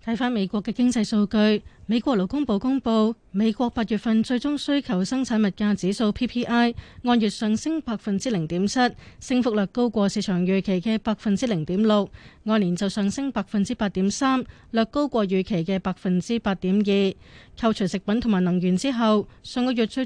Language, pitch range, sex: Chinese, 195-235 Hz, female